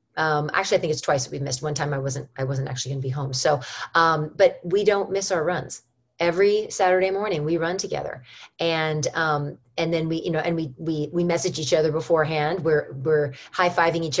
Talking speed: 225 wpm